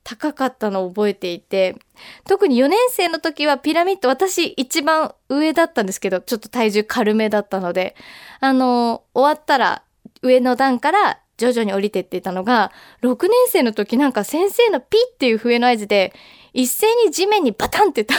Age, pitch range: 20-39, 235-315 Hz